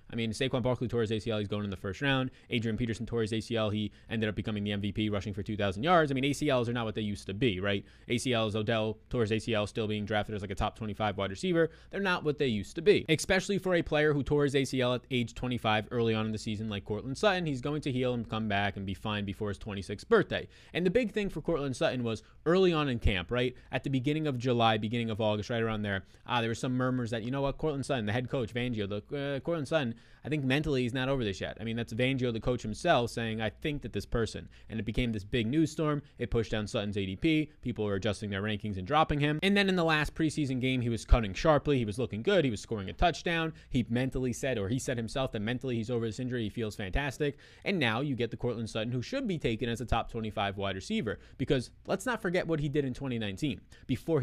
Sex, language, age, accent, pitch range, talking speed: male, English, 20-39, American, 110-140 Hz, 265 wpm